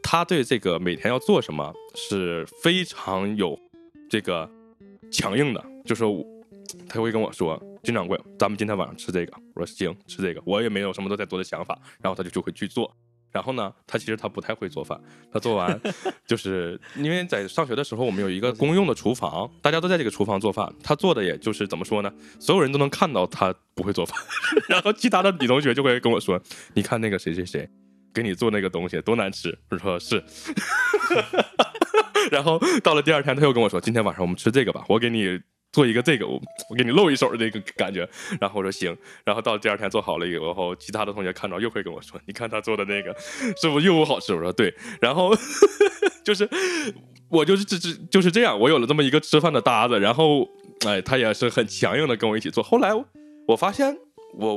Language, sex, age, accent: Chinese, male, 20-39, native